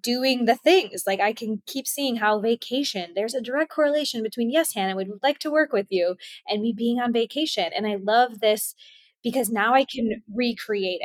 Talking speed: 200 wpm